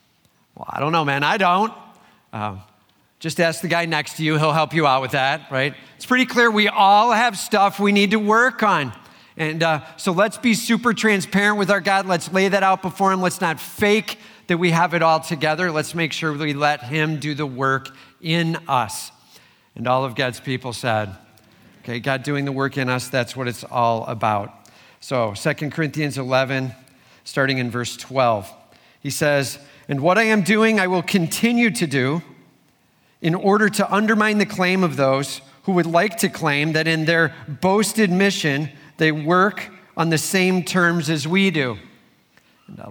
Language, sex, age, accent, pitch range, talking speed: English, male, 50-69, American, 145-200 Hz, 190 wpm